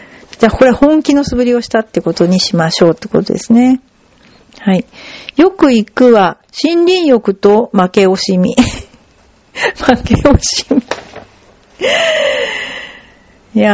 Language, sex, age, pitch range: Japanese, female, 40-59, 195-275 Hz